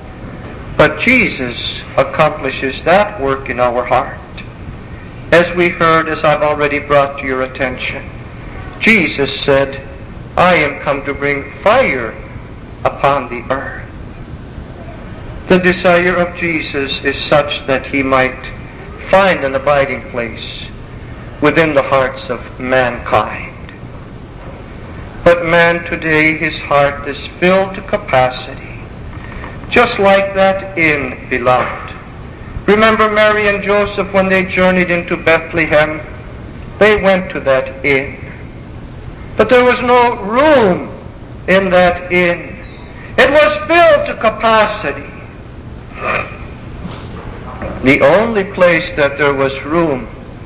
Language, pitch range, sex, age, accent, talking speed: English, 130-180 Hz, male, 60-79, American, 115 wpm